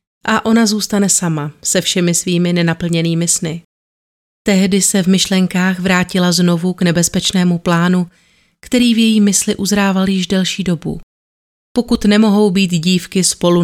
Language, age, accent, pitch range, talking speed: Czech, 30-49, native, 170-195 Hz, 135 wpm